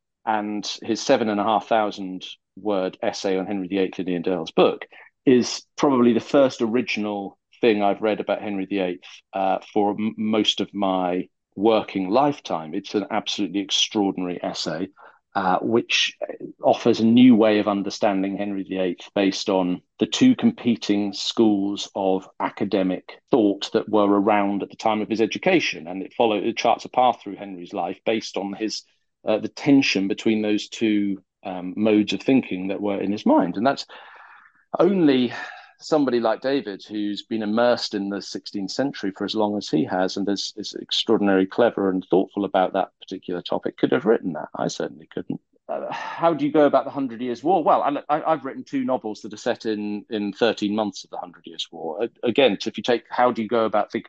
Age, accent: 40-59, British